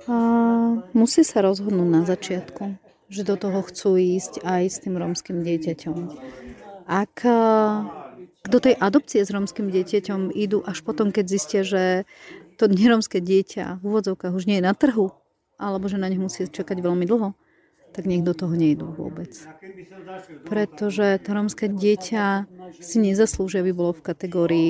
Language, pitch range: Slovak, 180-220 Hz